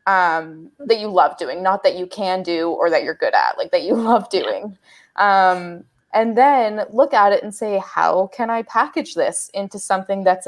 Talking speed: 205 wpm